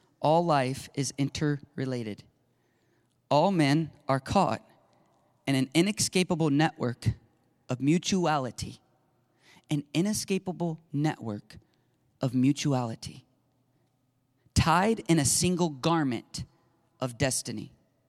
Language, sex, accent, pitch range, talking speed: English, male, American, 130-175 Hz, 85 wpm